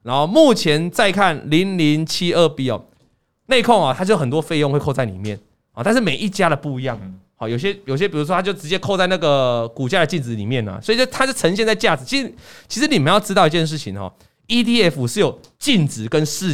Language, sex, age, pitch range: Chinese, male, 20-39, 130-200 Hz